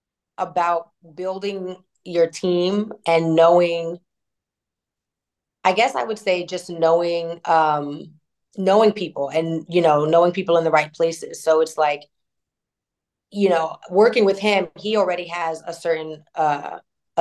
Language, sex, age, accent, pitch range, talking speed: English, female, 30-49, American, 155-175 Hz, 135 wpm